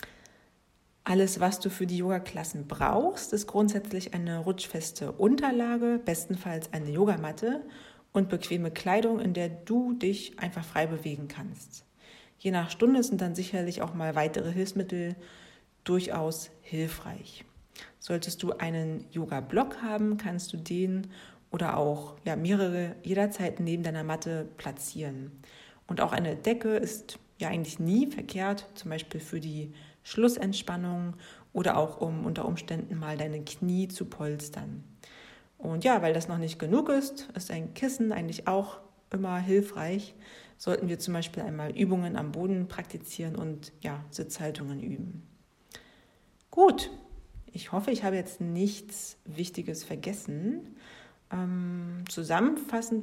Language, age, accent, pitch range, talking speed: German, 40-59, German, 165-200 Hz, 130 wpm